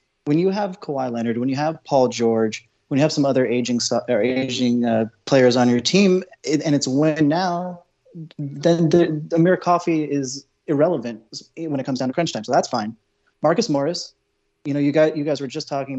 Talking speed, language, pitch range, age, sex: 210 wpm, English, 125-160 Hz, 30-49, male